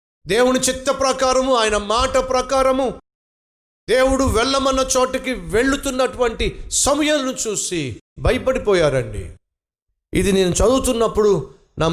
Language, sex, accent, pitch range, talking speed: Telugu, male, native, 185-265 Hz, 75 wpm